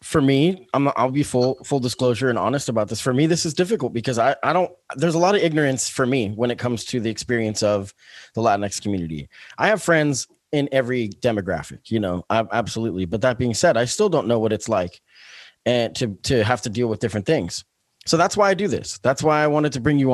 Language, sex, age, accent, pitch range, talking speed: English, male, 20-39, American, 110-140 Hz, 240 wpm